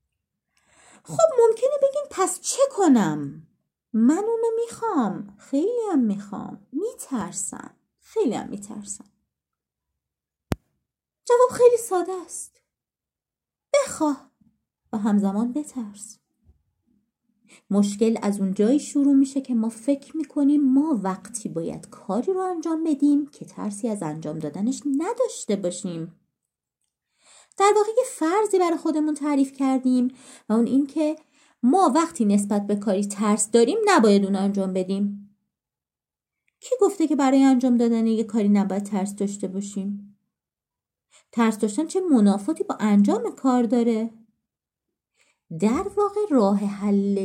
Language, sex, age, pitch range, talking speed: Persian, female, 30-49, 205-310 Hz, 120 wpm